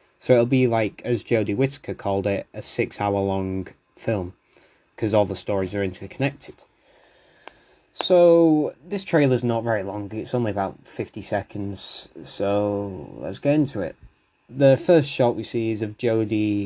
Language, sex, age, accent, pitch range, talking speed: English, male, 20-39, British, 100-120 Hz, 150 wpm